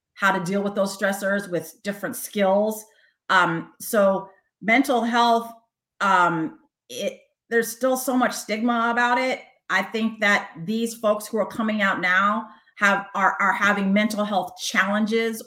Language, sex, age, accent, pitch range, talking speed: English, female, 40-59, American, 185-215 Hz, 150 wpm